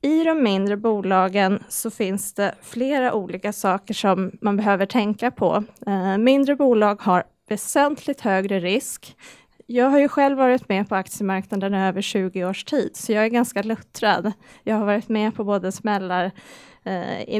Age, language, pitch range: 30-49, Swedish, 195-245 Hz